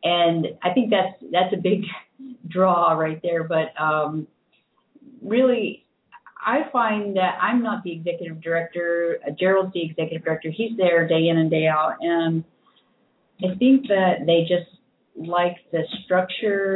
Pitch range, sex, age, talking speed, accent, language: 170-205 Hz, female, 30-49, 150 wpm, American, English